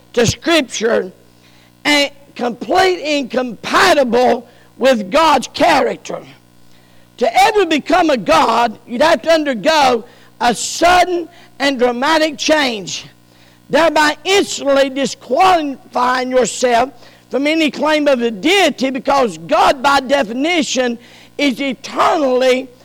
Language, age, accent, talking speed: English, 50-69, American, 100 wpm